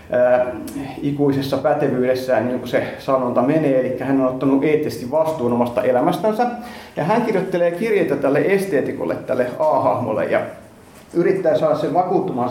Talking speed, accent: 135 wpm, native